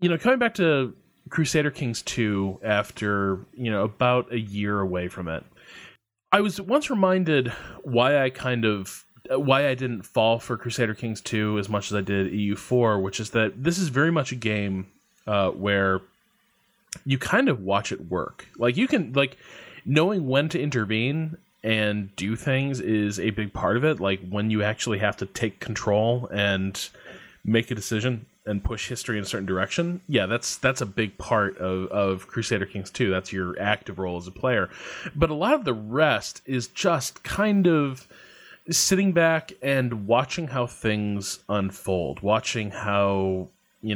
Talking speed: 175 wpm